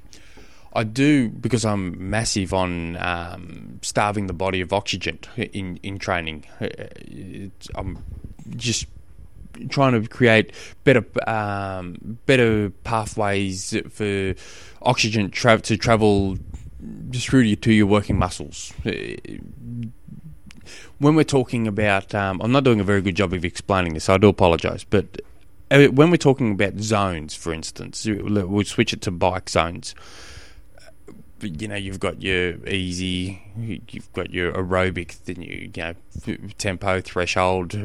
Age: 20-39